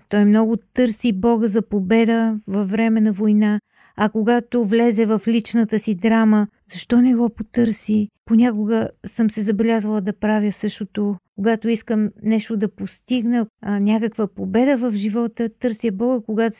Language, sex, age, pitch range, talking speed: Bulgarian, female, 40-59, 205-230 Hz, 150 wpm